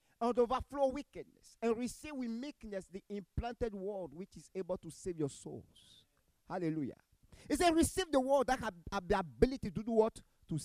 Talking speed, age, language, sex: 180 wpm, 50-69, English, male